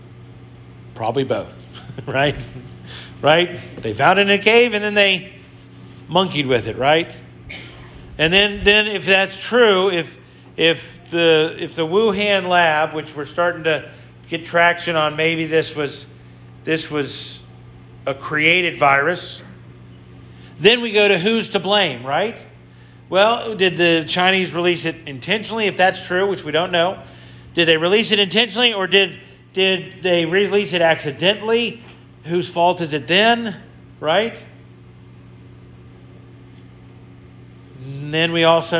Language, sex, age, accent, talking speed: English, male, 40-59, American, 135 wpm